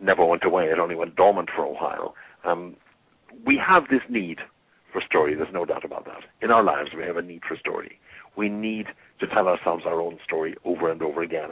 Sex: male